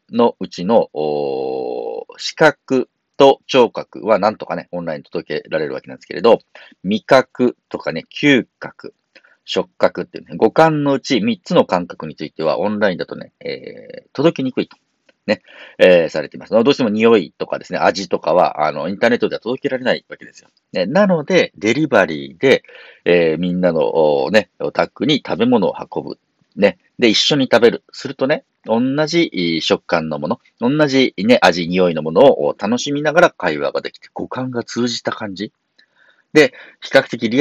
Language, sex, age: Japanese, male, 50-69